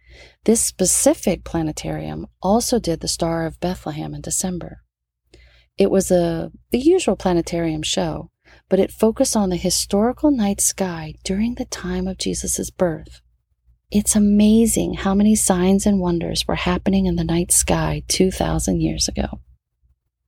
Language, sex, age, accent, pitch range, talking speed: English, female, 40-59, American, 155-200 Hz, 140 wpm